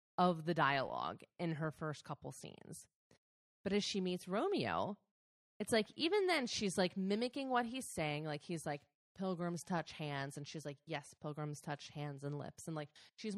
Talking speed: 185 wpm